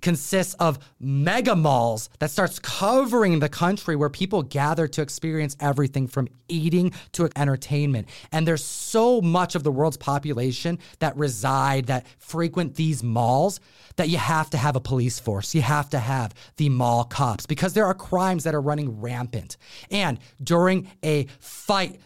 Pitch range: 135-180 Hz